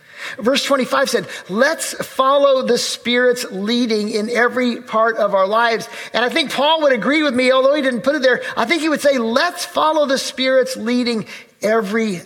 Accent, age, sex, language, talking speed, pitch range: American, 50-69, male, English, 190 wpm, 190-260 Hz